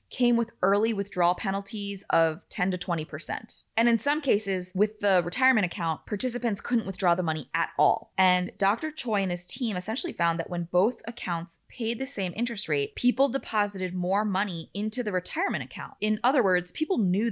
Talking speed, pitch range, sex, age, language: 185 wpm, 175-220 Hz, female, 20-39, English